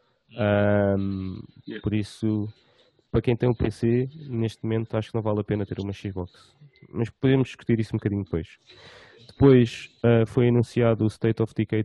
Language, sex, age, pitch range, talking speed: English, male, 20-39, 105-120 Hz, 160 wpm